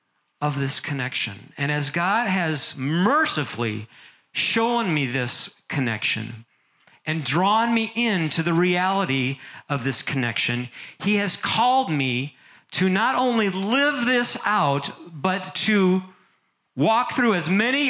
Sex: male